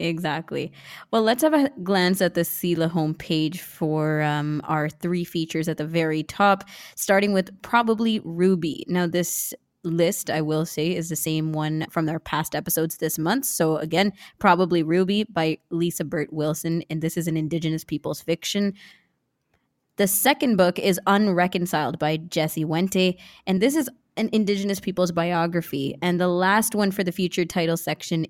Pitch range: 160-195 Hz